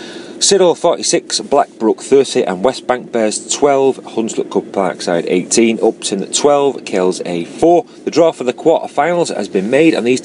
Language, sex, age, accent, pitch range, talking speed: English, male, 30-49, British, 100-150 Hz, 165 wpm